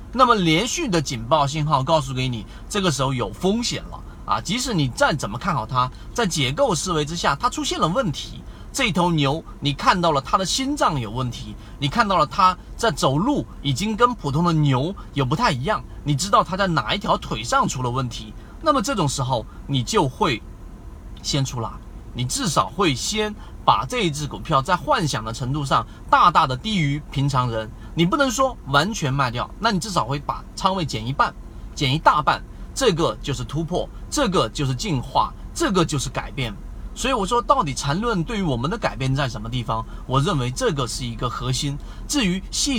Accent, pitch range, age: native, 125-175 Hz, 30-49